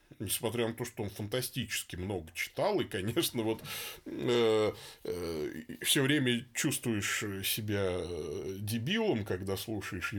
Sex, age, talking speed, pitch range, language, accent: male, 20-39, 125 wpm, 90-125 Hz, Russian, native